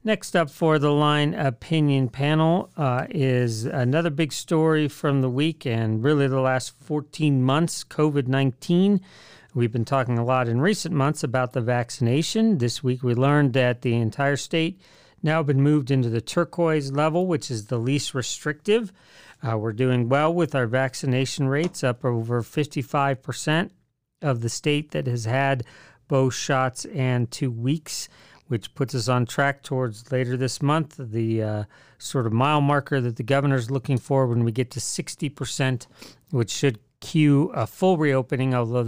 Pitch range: 125-150 Hz